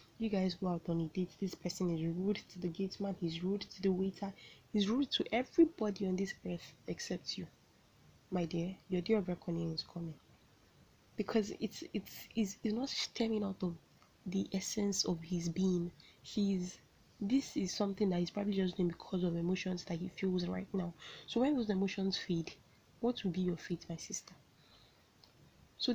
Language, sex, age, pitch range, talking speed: English, female, 10-29, 175-205 Hz, 185 wpm